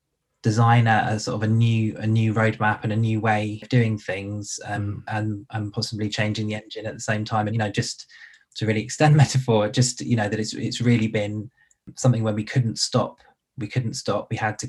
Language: English